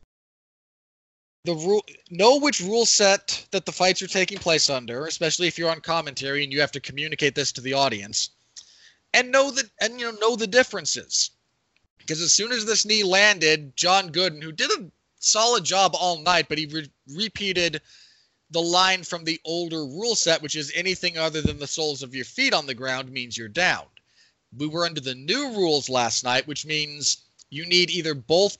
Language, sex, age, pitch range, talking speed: English, male, 20-39, 135-180 Hz, 195 wpm